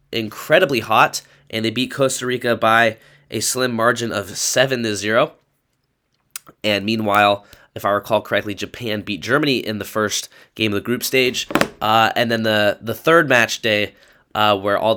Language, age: English, 10-29